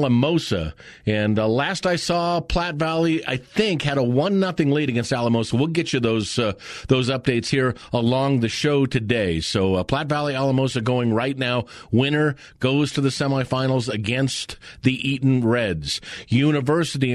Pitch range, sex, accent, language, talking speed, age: 115-150 Hz, male, American, English, 165 wpm, 40-59